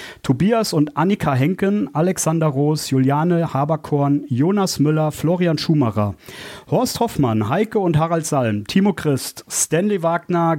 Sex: male